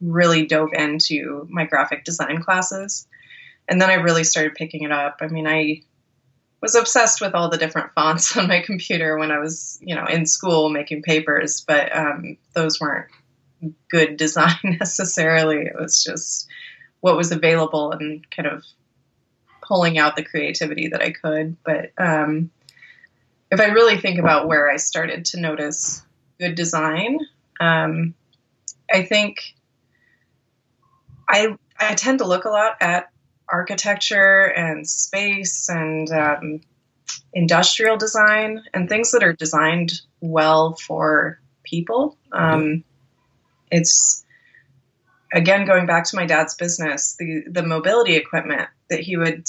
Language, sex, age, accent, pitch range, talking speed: English, female, 20-39, American, 150-180 Hz, 140 wpm